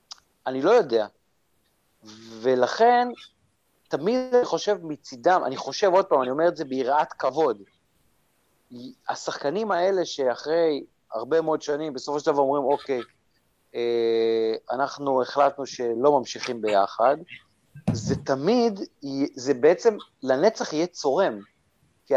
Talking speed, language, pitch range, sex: 115 wpm, Hebrew, 130-175 Hz, male